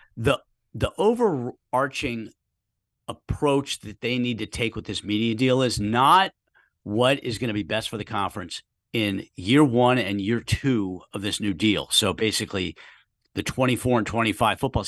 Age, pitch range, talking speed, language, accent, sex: 50-69, 110-140 Hz, 165 wpm, English, American, male